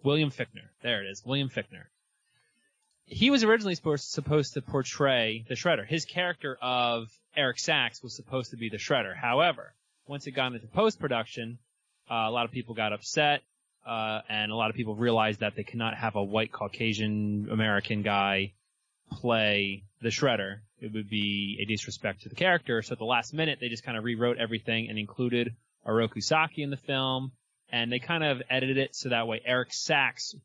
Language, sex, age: English, male, 20-39